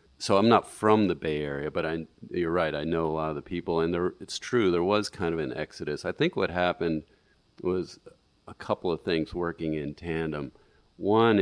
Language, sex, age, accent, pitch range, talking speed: English, male, 40-59, American, 75-90 Hz, 215 wpm